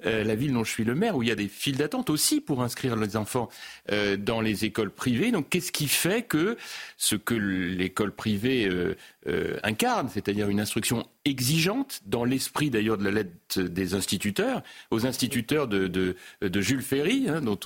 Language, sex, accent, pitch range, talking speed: French, male, French, 100-145 Hz, 195 wpm